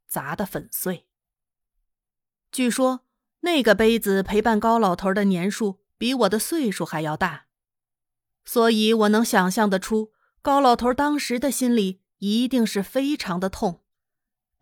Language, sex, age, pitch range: Chinese, female, 30-49, 185-235 Hz